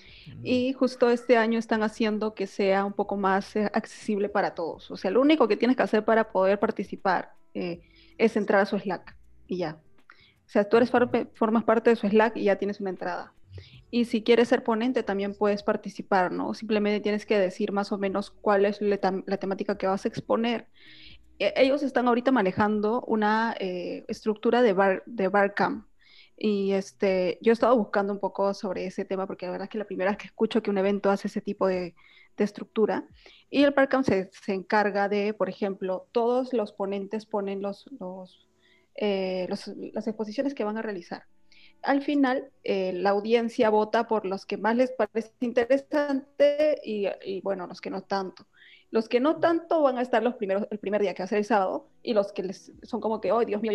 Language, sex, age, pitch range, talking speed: Spanish, female, 20-39, 195-235 Hz, 210 wpm